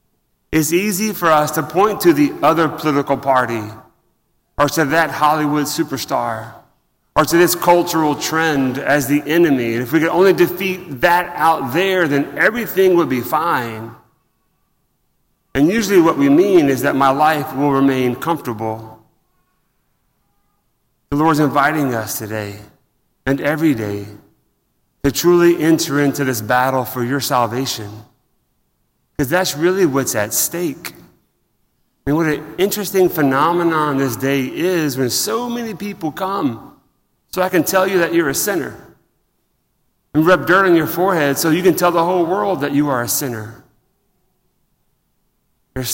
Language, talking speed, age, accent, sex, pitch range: English, 150 wpm, 30-49, American, male, 125-170 Hz